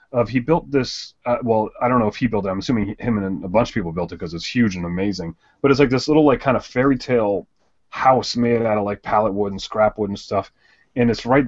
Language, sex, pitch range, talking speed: English, male, 105-130 Hz, 280 wpm